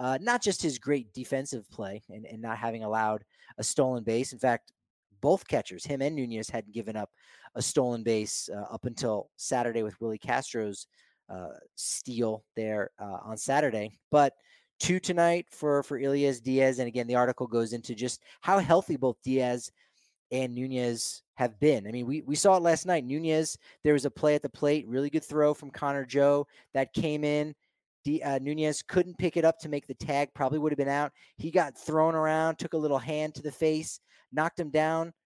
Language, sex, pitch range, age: English, male, 120-150 Hz, 30-49